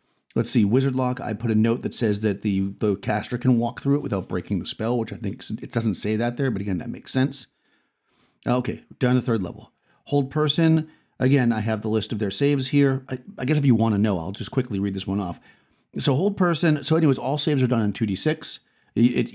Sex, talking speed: male, 240 wpm